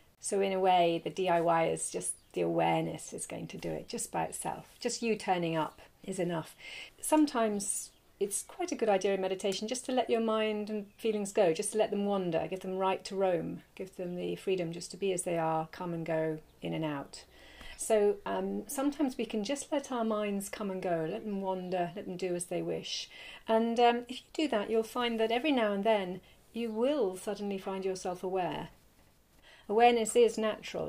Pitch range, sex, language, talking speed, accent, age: 185-230 Hz, female, English, 210 wpm, British, 40-59